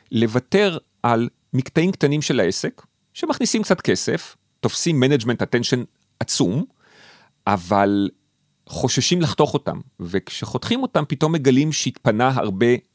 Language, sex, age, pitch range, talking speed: Hebrew, male, 40-59, 105-155 Hz, 105 wpm